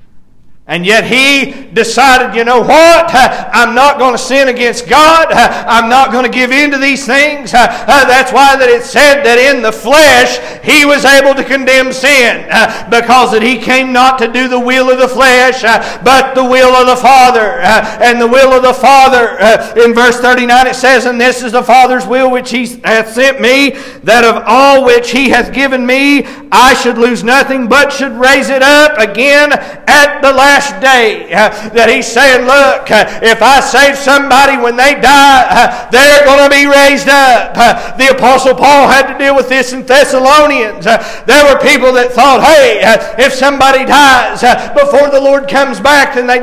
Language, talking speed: English, 195 wpm